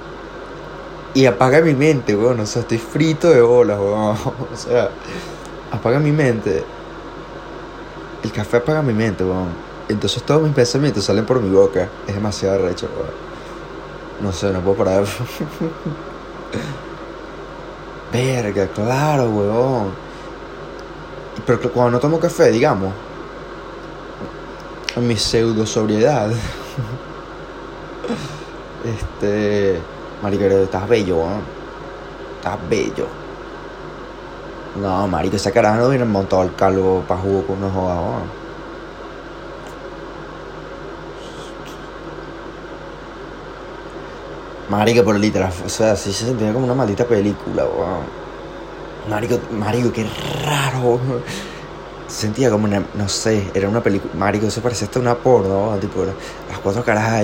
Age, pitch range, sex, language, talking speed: 20-39, 100-120 Hz, male, Spanish, 120 wpm